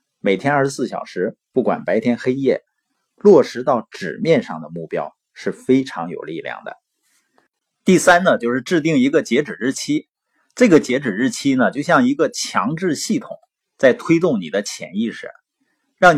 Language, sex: Chinese, male